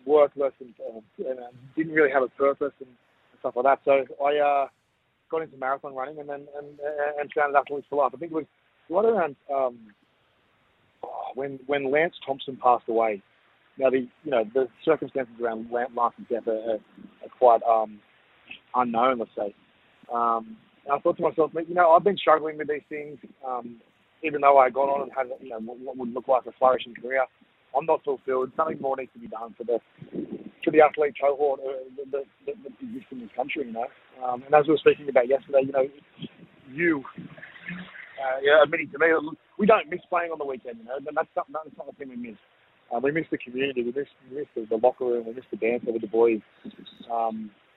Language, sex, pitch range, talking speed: English, male, 120-150 Hz, 210 wpm